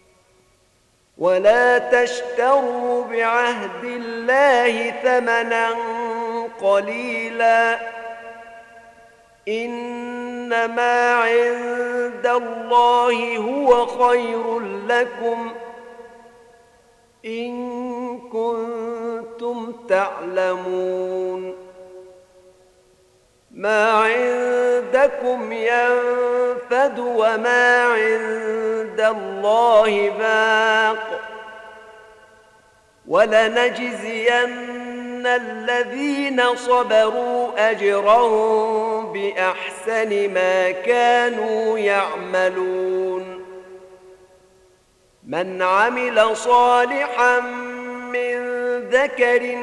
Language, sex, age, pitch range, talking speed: Arabic, male, 50-69, 220-245 Hz, 45 wpm